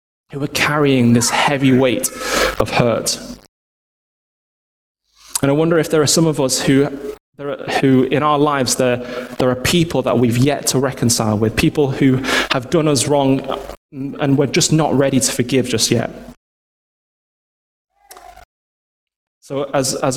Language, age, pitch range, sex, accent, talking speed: English, 20-39, 125-160 Hz, male, British, 150 wpm